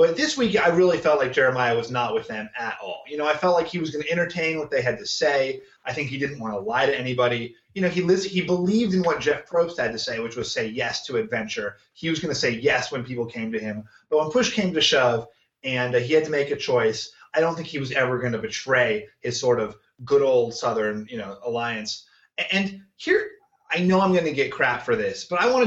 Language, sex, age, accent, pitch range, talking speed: English, male, 30-49, American, 130-200 Hz, 270 wpm